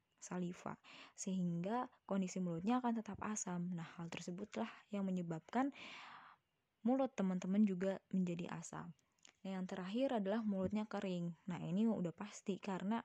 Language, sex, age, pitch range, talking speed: Indonesian, female, 20-39, 180-215 Hz, 130 wpm